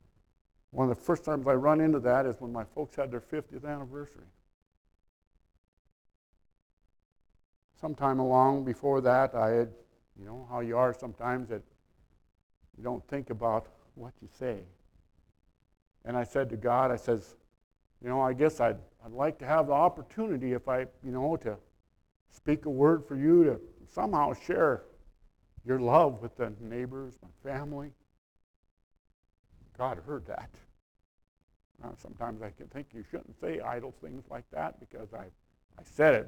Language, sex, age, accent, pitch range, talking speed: English, male, 60-79, American, 95-140 Hz, 155 wpm